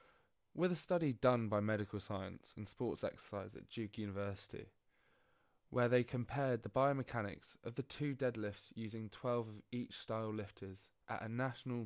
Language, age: English, 20-39